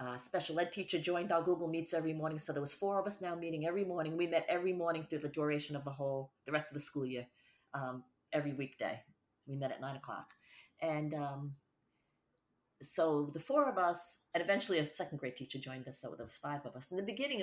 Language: English